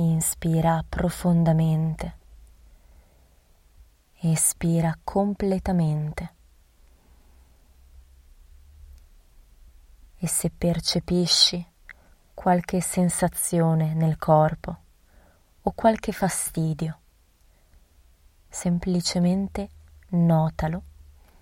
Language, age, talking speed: Italian, 20-39, 45 wpm